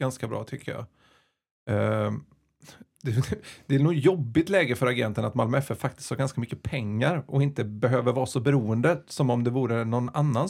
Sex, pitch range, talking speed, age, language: male, 110-140 Hz, 190 wpm, 30-49, Swedish